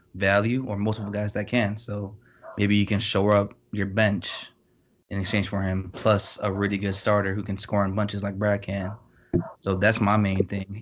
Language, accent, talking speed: English, American, 200 wpm